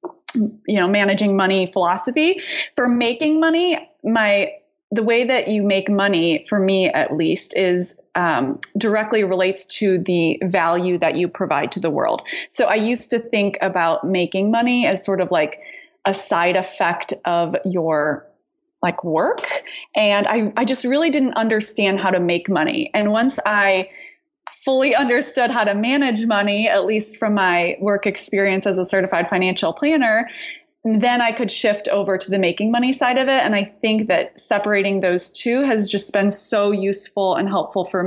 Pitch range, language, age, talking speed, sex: 185-235 Hz, English, 20-39, 170 wpm, female